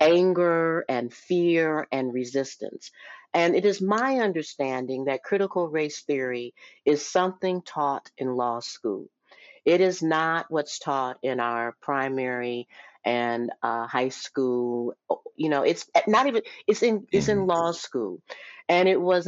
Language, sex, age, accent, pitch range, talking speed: English, female, 50-69, American, 145-180 Hz, 140 wpm